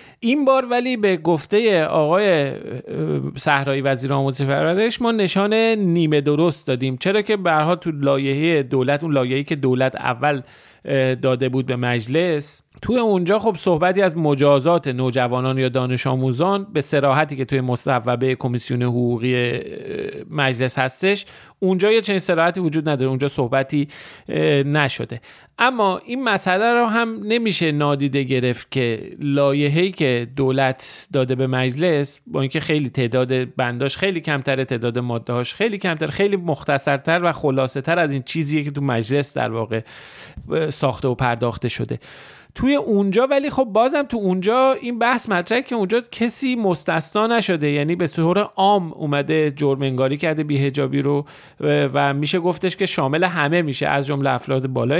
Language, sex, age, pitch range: Persian, male, 40-59, 130-185 Hz